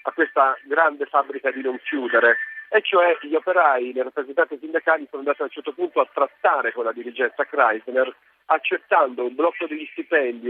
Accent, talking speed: native, 175 wpm